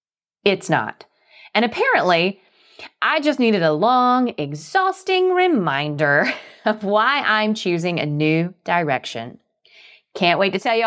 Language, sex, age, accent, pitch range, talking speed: English, female, 30-49, American, 170-240 Hz, 125 wpm